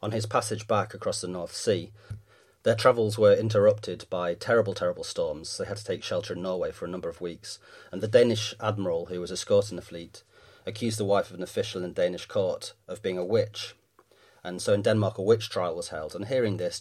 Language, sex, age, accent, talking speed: English, male, 30-49, British, 225 wpm